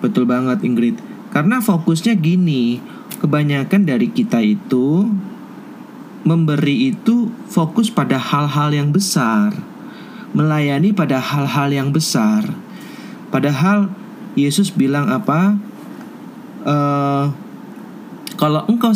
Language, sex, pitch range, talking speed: Indonesian, male, 145-220 Hz, 90 wpm